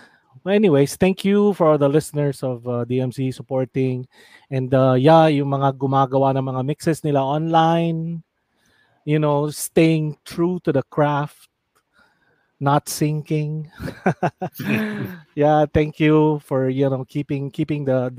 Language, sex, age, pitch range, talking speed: Filipino, male, 20-39, 130-165 Hz, 140 wpm